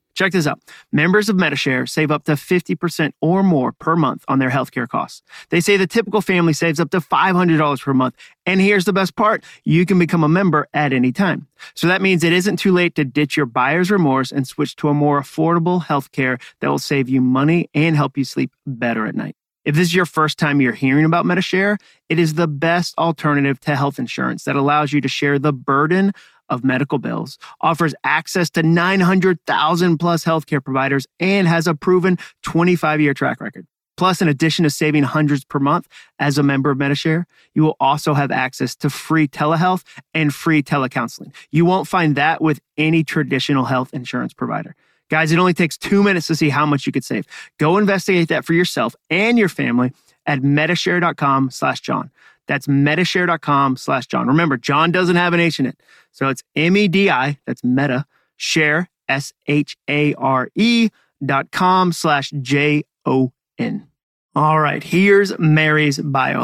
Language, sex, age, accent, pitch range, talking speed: English, male, 30-49, American, 140-175 Hz, 190 wpm